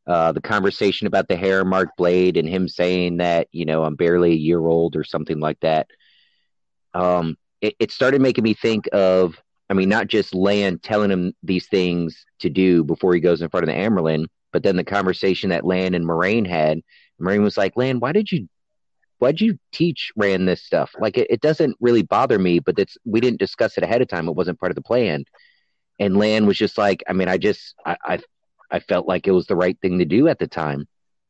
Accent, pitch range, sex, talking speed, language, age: American, 80-100 Hz, male, 230 wpm, English, 30-49